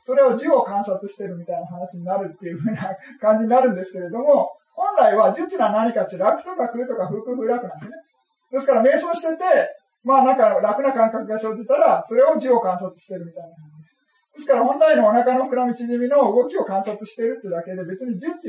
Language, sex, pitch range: Japanese, male, 190-285 Hz